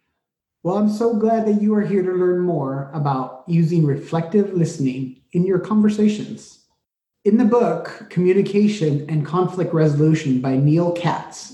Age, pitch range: 30-49, 140-185 Hz